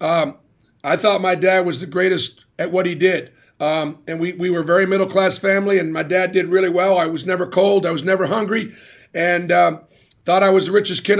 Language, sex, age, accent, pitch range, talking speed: English, male, 50-69, American, 175-210 Hz, 225 wpm